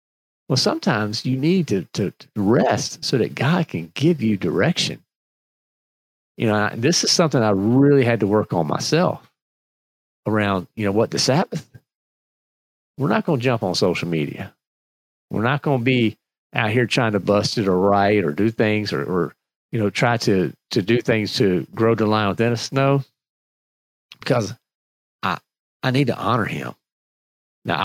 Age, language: 40-59, English